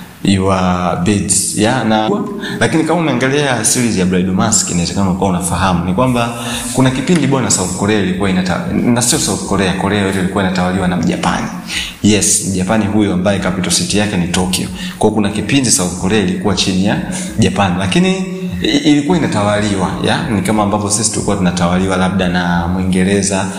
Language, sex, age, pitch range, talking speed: Swahili, male, 30-49, 95-115 Hz, 150 wpm